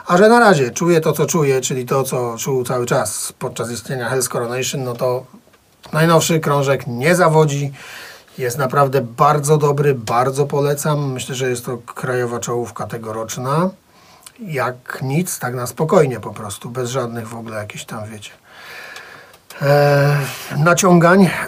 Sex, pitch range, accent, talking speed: male, 125-160 Hz, native, 145 wpm